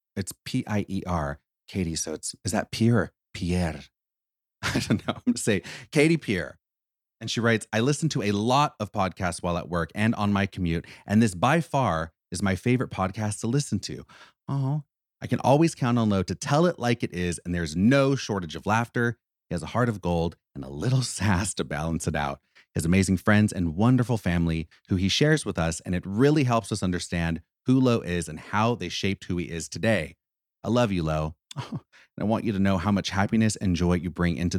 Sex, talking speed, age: male, 215 wpm, 30-49